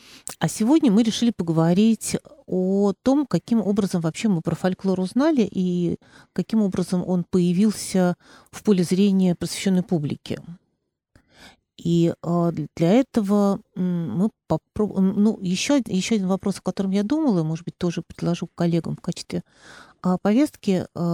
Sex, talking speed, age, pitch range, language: female, 130 wpm, 40-59, 180-210 Hz, Russian